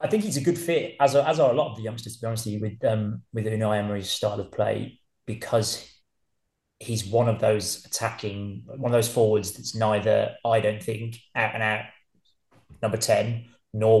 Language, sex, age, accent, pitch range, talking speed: English, male, 20-39, British, 100-115 Hz, 195 wpm